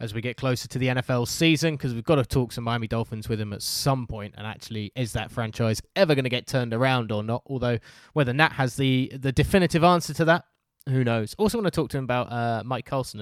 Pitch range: 115-140 Hz